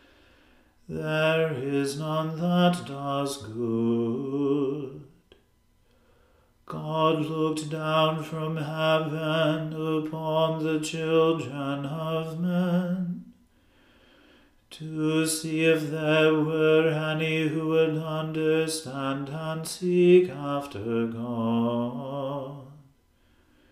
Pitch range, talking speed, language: 150-160 Hz, 75 wpm, English